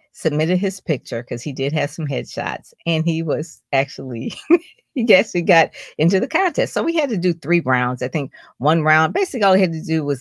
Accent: American